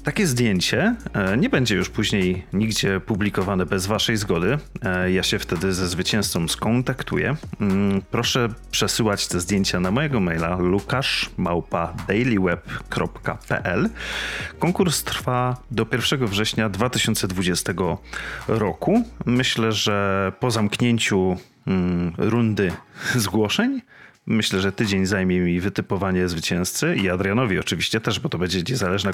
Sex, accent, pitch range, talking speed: male, native, 95-120 Hz, 110 wpm